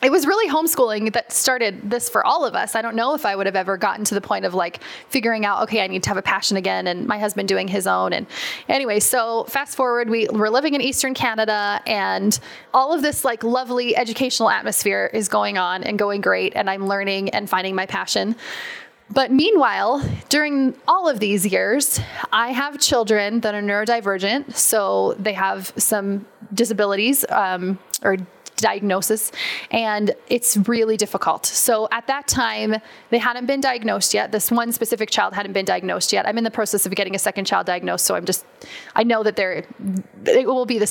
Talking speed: 200 wpm